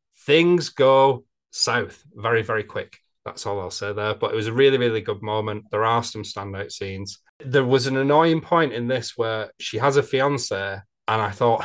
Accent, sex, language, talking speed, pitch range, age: British, male, English, 200 wpm, 110-140 Hz, 30-49